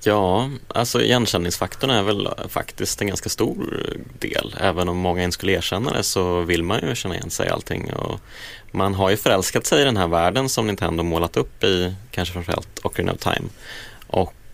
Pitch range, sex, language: 90-110 Hz, male, Swedish